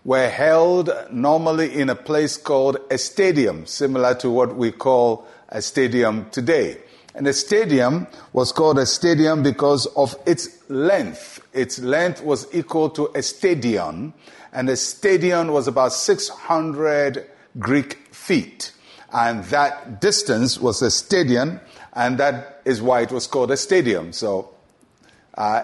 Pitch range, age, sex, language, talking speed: 130-155 Hz, 50-69, male, English, 140 wpm